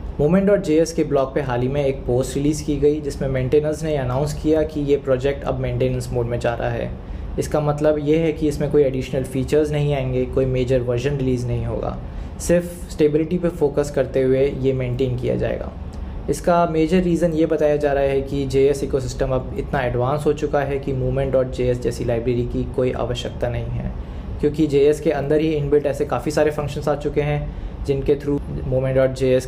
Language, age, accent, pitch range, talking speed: Hindi, 20-39, native, 125-150 Hz, 195 wpm